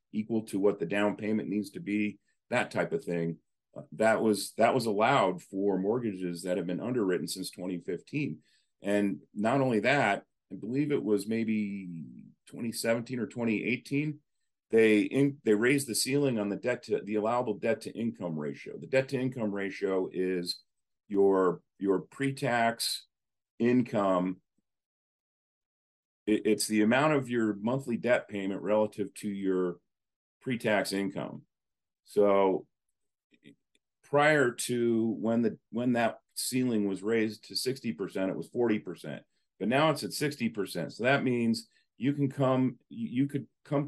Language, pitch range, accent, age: English, 100-125 Hz, American, 40-59